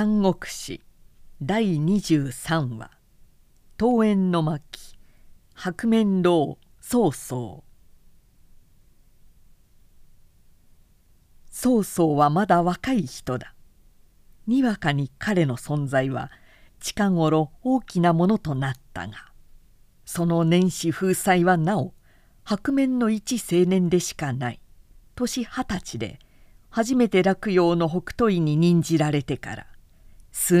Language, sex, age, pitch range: Japanese, female, 50-69, 145-200 Hz